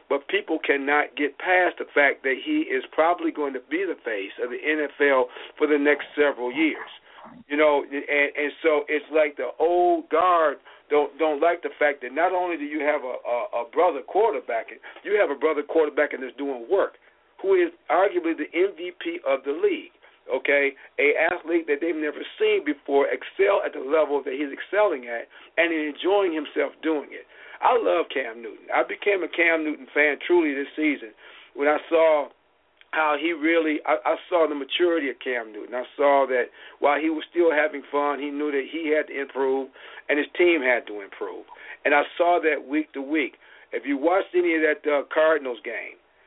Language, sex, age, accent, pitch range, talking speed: English, male, 50-69, American, 145-185 Hz, 195 wpm